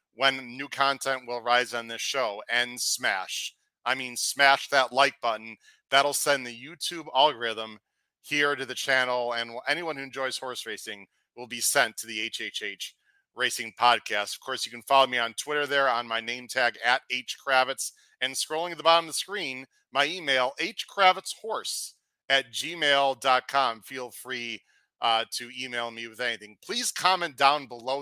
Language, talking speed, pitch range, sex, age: English, 170 wpm, 120-140 Hz, male, 40-59